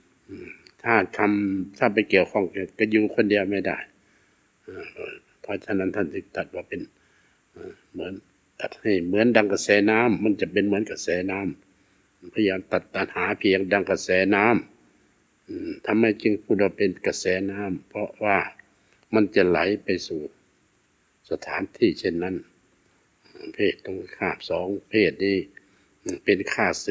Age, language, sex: 60-79, English, male